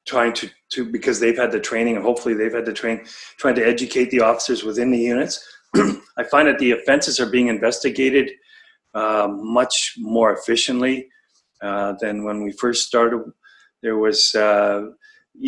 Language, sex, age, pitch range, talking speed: English, male, 40-59, 110-125 Hz, 165 wpm